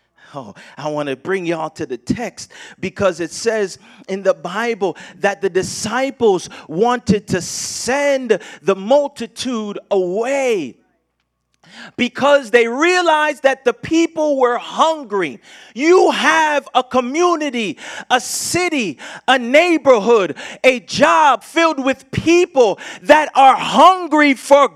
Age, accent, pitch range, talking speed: 40-59, American, 210-295 Hz, 120 wpm